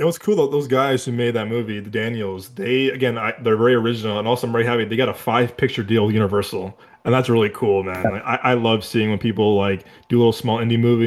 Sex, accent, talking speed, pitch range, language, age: male, American, 255 wpm, 105-125 Hz, English, 20-39